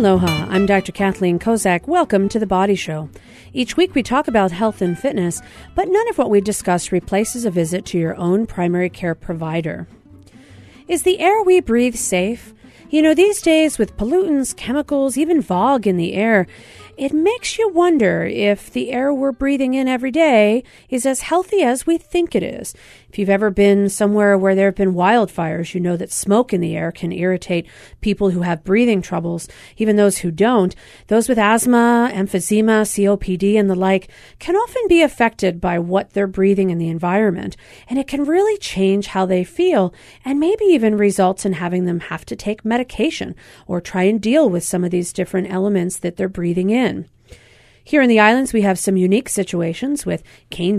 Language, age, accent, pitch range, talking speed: English, 40-59, American, 185-265 Hz, 190 wpm